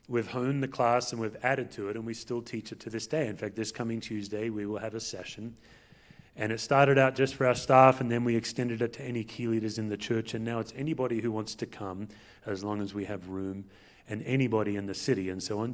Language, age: English, 30-49